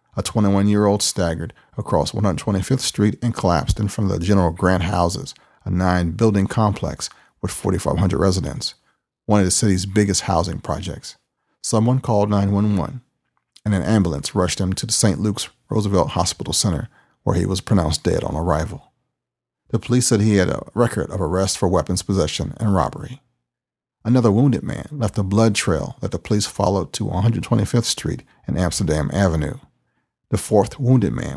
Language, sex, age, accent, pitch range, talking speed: English, male, 40-59, American, 90-115 Hz, 165 wpm